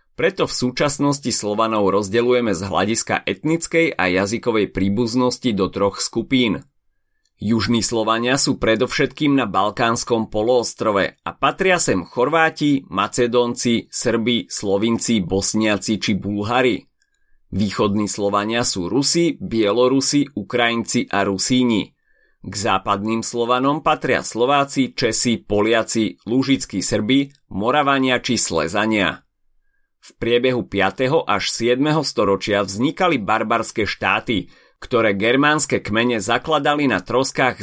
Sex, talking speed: male, 105 wpm